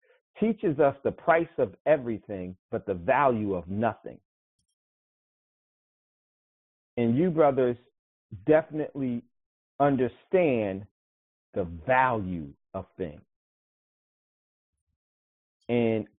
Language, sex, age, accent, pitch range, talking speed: English, male, 40-59, American, 110-135 Hz, 80 wpm